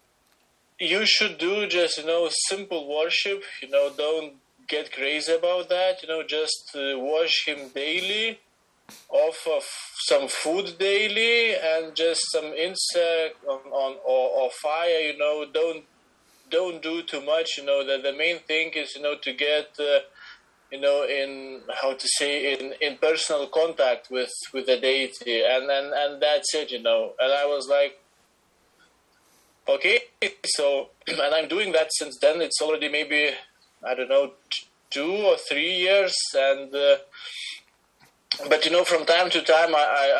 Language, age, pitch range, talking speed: English, 20-39, 145-185 Hz, 165 wpm